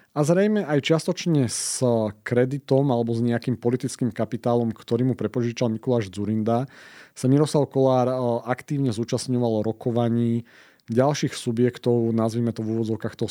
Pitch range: 115-130 Hz